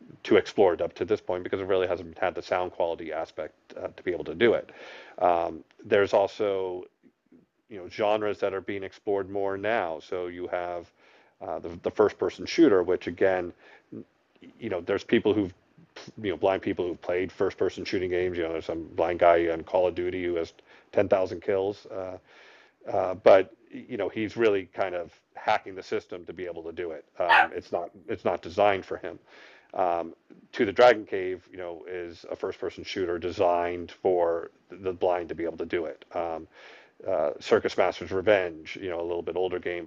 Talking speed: 205 wpm